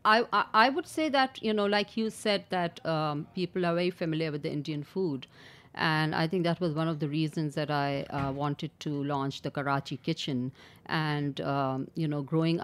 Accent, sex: Indian, female